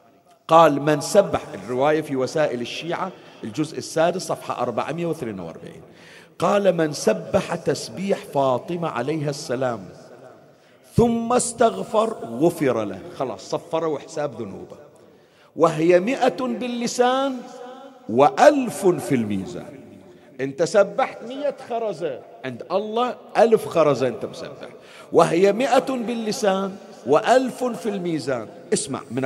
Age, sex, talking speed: 50-69, male, 105 wpm